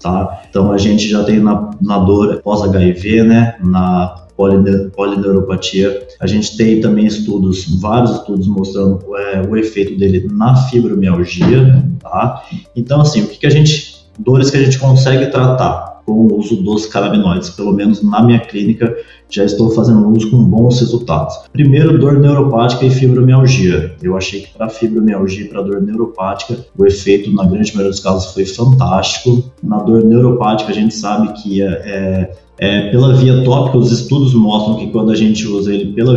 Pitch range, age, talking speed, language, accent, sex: 100-120 Hz, 20-39, 170 wpm, Portuguese, Brazilian, male